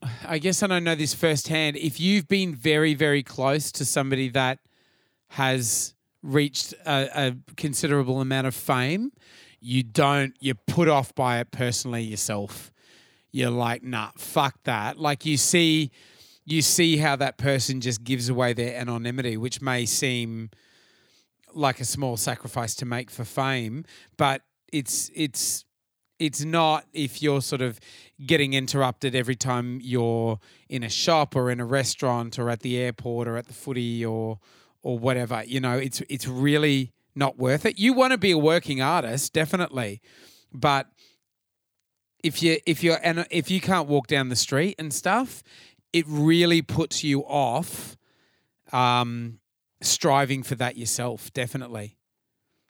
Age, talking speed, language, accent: 30-49, 155 wpm, English, Australian